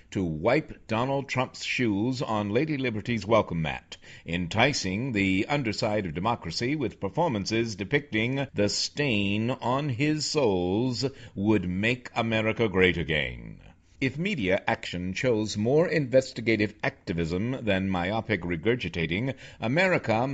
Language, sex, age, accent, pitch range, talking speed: English, male, 60-79, American, 95-135 Hz, 115 wpm